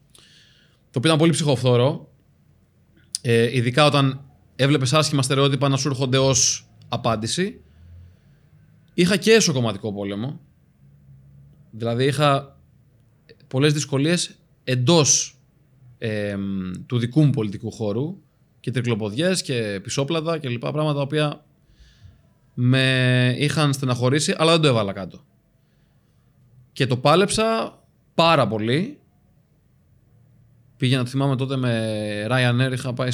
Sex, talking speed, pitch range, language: male, 110 wpm, 120-150 Hz, Greek